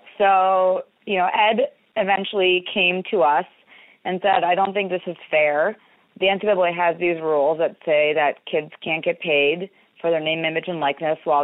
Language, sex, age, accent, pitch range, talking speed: English, female, 30-49, American, 150-185 Hz, 185 wpm